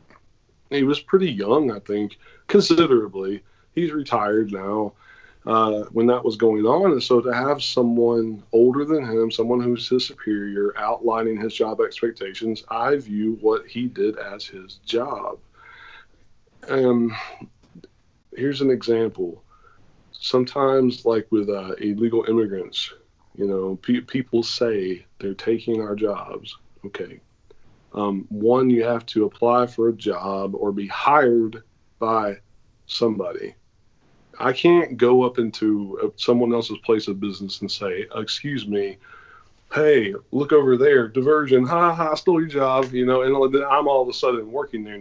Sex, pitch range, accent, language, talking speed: male, 105-135 Hz, American, English, 145 wpm